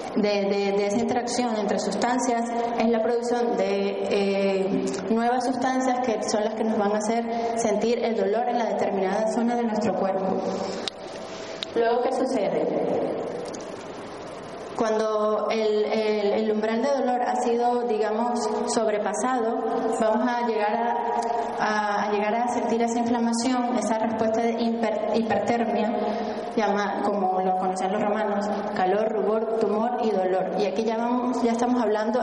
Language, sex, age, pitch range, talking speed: Spanish, female, 20-39, 210-240 Hz, 140 wpm